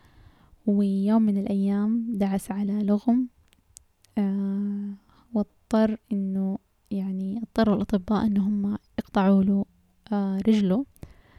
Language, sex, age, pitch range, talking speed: Arabic, female, 10-29, 195-215 Hz, 95 wpm